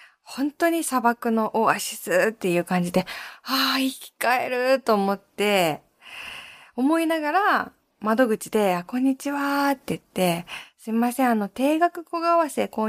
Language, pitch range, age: Japanese, 185-270 Hz, 20-39